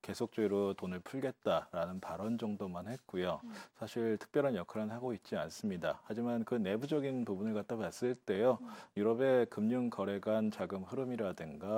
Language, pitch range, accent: Korean, 105-125 Hz, native